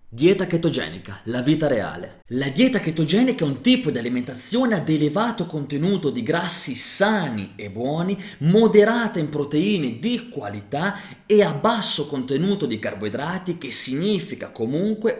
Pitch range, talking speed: 140-215 Hz, 140 wpm